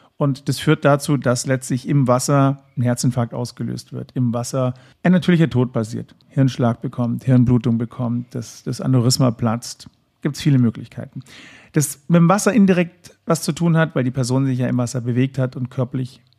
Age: 40-59